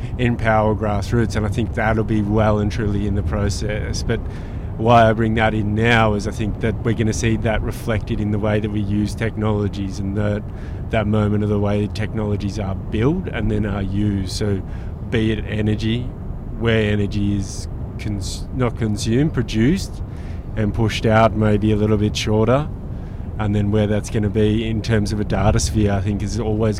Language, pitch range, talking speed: English, 100-110 Hz, 195 wpm